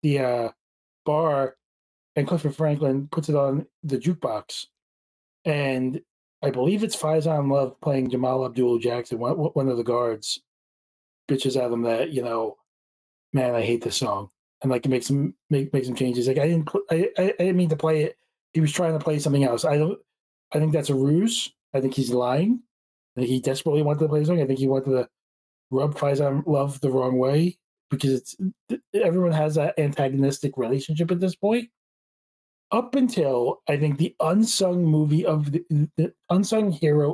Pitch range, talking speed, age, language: 130-160 Hz, 185 wpm, 20-39, English